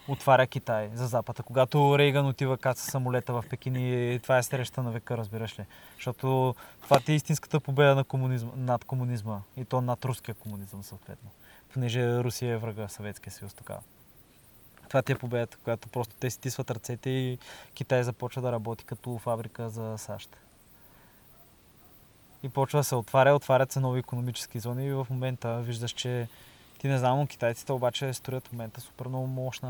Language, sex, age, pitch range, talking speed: Bulgarian, male, 20-39, 115-130 Hz, 175 wpm